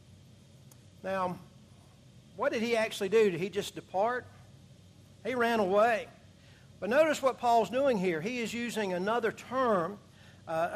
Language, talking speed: English, 140 wpm